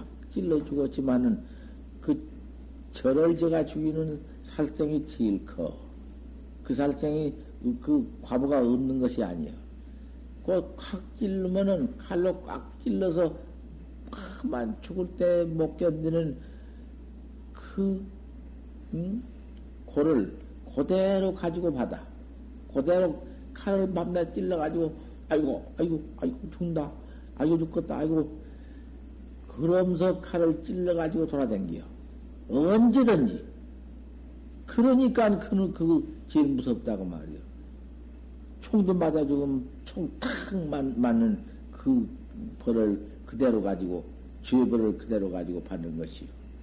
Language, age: Korean, 60-79